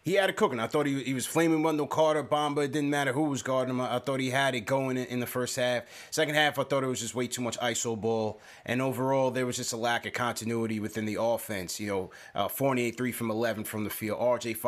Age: 30-49